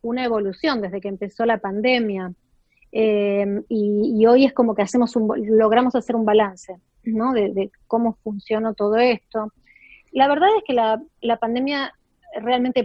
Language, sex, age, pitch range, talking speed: Spanish, female, 30-49, 210-255 Hz, 165 wpm